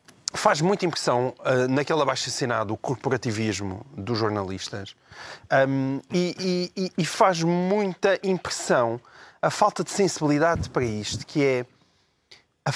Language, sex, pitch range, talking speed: Portuguese, male, 125-160 Hz, 120 wpm